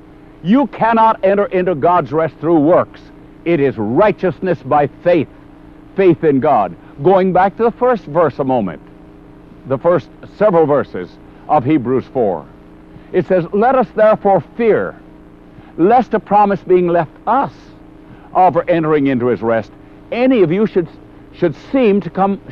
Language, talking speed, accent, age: English, 150 wpm, American, 60-79